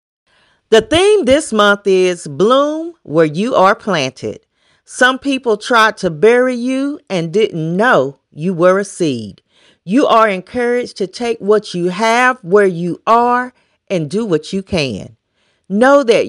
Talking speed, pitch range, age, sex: 150 wpm, 180-245 Hz, 40-59, female